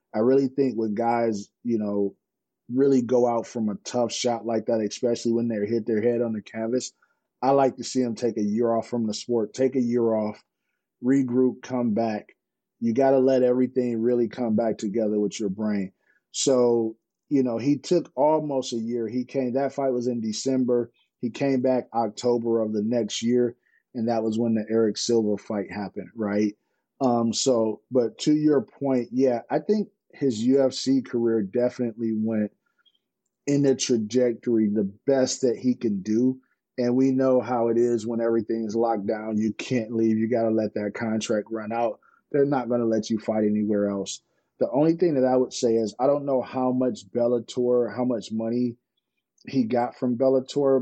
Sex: male